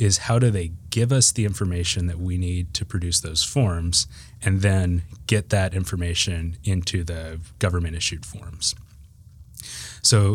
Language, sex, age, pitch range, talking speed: English, male, 30-49, 90-105 Hz, 145 wpm